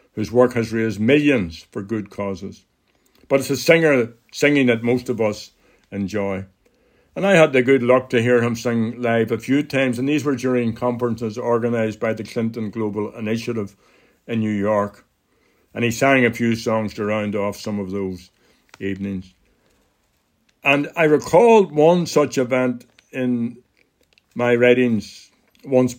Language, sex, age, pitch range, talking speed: English, male, 60-79, 110-130 Hz, 160 wpm